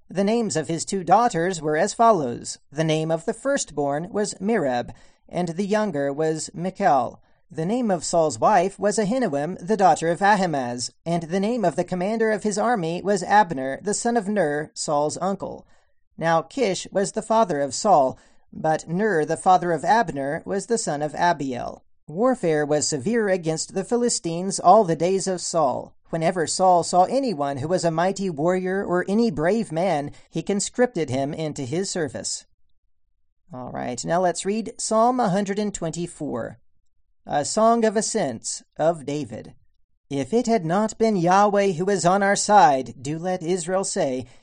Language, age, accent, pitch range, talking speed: English, 40-59, American, 155-205 Hz, 170 wpm